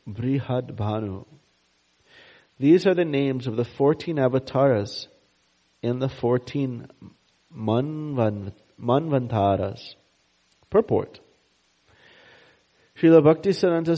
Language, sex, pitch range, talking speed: English, male, 105-140 Hz, 75 wpm